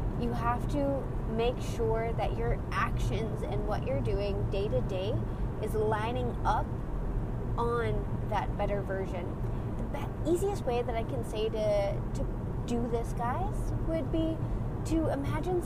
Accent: American